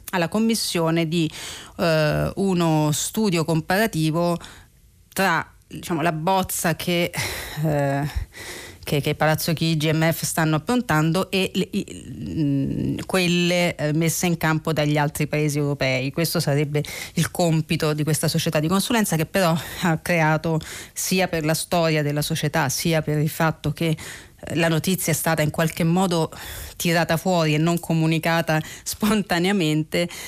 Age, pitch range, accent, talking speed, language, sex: 30-49, 155-180 Hz, native, 125 wpm, Italian, female